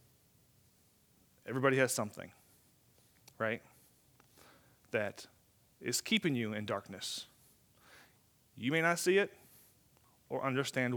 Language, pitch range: English, 120-150 Hz